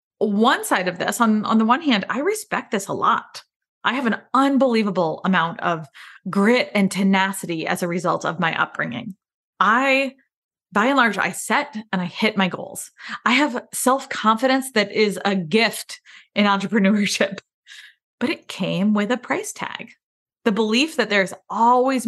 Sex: female